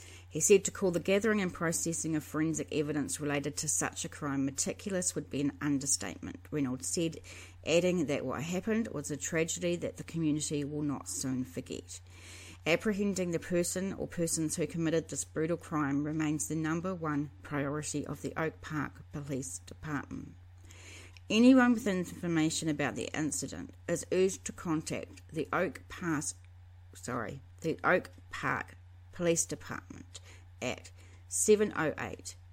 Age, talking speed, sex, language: 30-49, 140 wpm, female, English